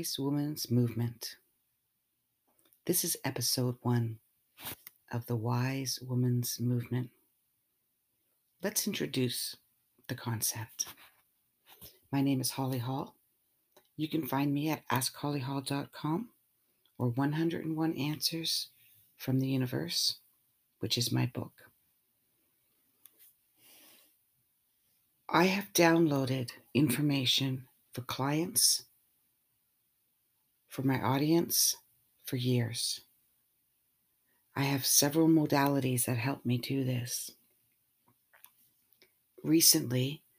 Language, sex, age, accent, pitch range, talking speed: English, female, 60-79, American, 125-150 Hz, 85 wpm